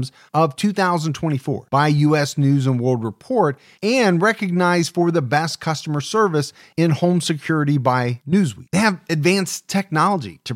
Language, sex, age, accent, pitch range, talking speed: English, male, 40-59, American, 140-180 Hz, 140 wpm